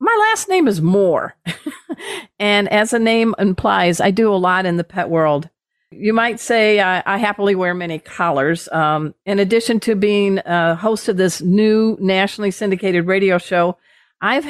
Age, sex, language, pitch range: 50-69, female, English, 185-235 Hz